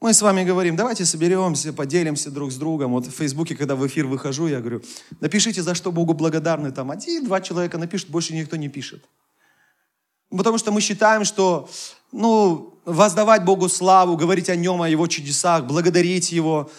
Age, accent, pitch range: 30-49, native, 150-200 Hz